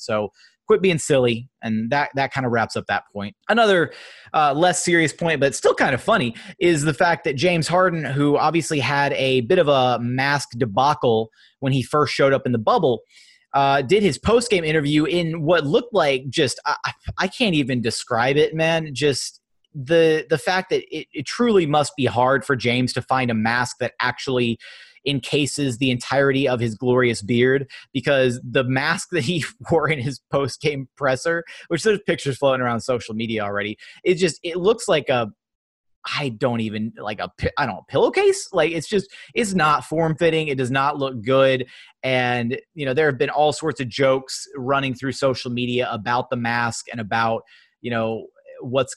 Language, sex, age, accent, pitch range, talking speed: English, male, 30-49, American, 125-160 Hz, 190 wpm